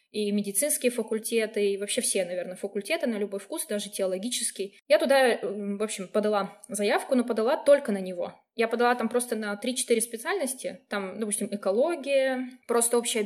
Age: 20-39